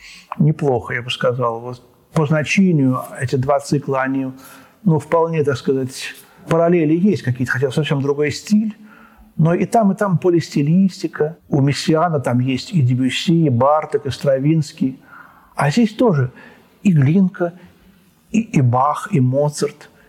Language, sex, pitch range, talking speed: Russian, male, 135-180 Hz, 145 wpm